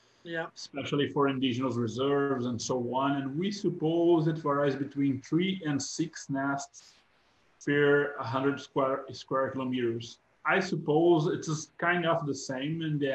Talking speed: 145 wpm